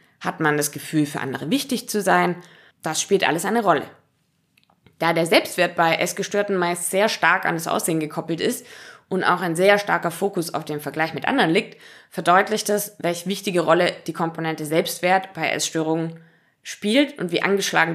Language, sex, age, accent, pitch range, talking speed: German, female, 20-39, German, 160-215 Hz, 175 wpm